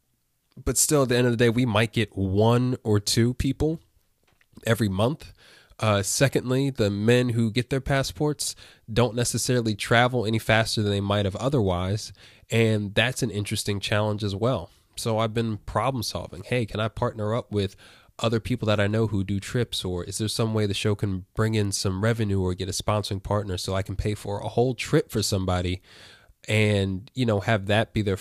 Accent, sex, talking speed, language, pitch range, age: American, male, 200 wpm, English, 95-115 Hz, 20-39